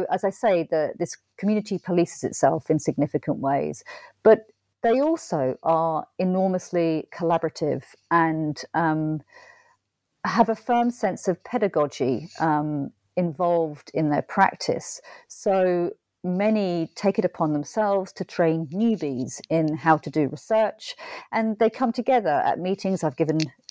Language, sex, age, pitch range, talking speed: English, female, 50-69, 155-205 Hz, 130 wpm